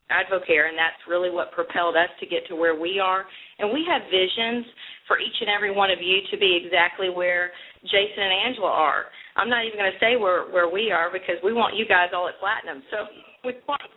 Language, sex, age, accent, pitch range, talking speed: English, female, 40-59, American, 180-220 Hz, 230 wpm